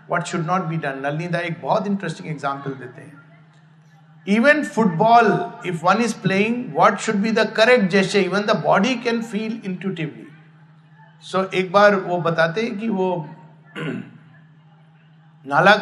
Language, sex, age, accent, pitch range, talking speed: Hindi, male, 60-79, native, 155-215 Hz, 130 wpm